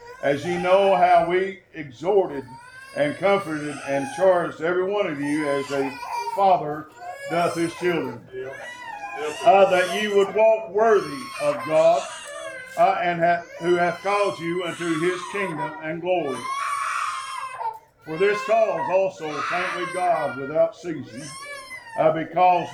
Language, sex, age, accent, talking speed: English, male, 50-69, American, 135 wpm